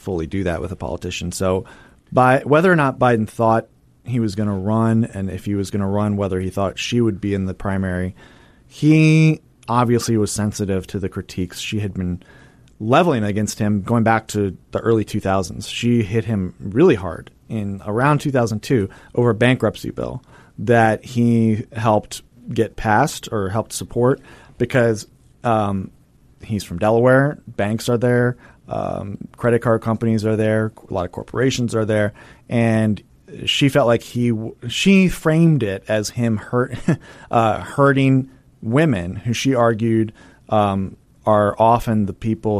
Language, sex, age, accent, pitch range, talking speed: English, male, 30-49, American, 100-120 Hz, 160 wpm